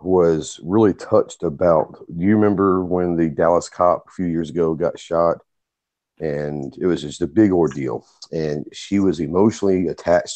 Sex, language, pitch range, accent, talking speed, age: male, English, 85-100 Hz, American, 170 wpm, 40-59